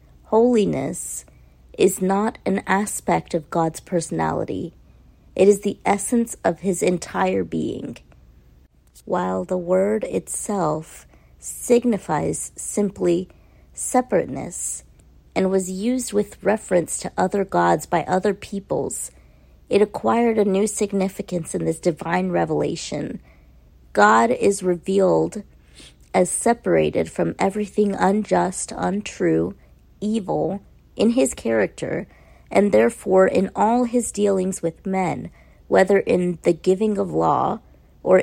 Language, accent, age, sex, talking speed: English, American, 40-59, female, 110 wpm